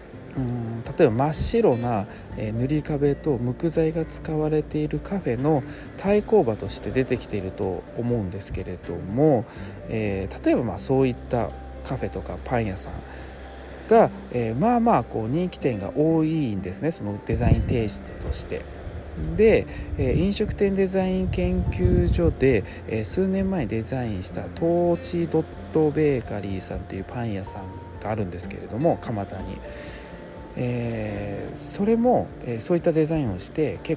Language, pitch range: Japanese, 100-155 Hz